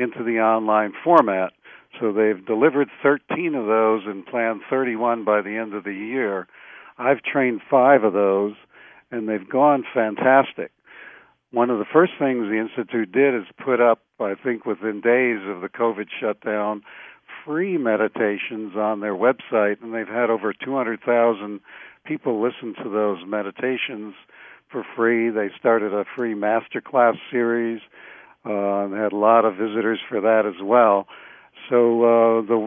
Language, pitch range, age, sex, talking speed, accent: English, 105-125 Hz, 60-79, male, 160 wpm, American